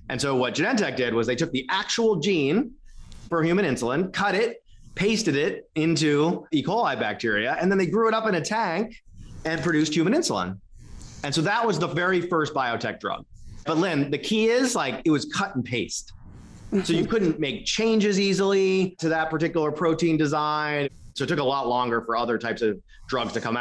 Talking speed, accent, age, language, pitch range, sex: 200 wpm, American, 30-49, English, 120-175 Hz, male